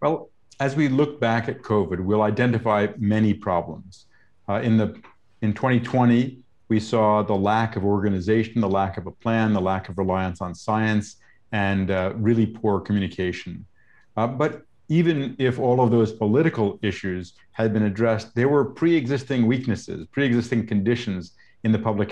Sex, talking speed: male, 160 wpm